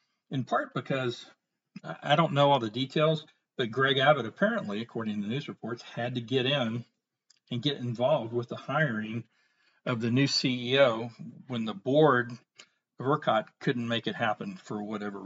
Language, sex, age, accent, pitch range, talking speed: English, male, 50-69, American, 120-160 Hz, 170 wpm